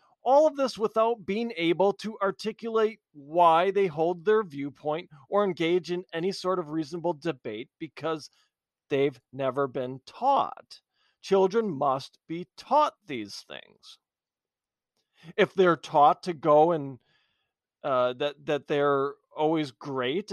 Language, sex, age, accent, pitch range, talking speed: English, male, 40-59, American, 145-195 Hz, 130 wpm